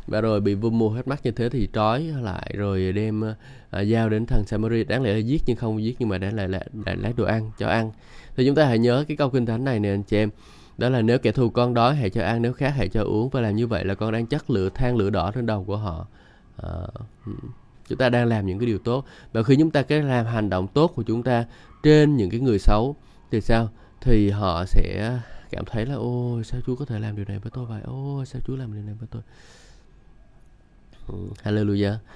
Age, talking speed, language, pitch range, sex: 20-39, 250 wpm, Vietnamese, 100-120 Hz, male